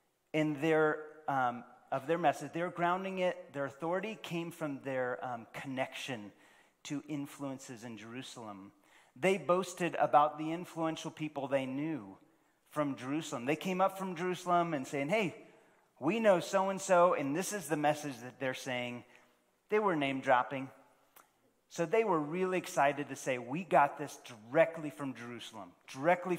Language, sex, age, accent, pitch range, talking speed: English, male, 30-49, American, 130-170 Hz, 150 wpm